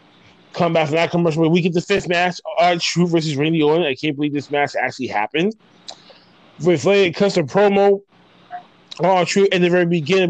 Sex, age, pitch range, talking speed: male, 20-39, 145-185 Hz, 200 wpm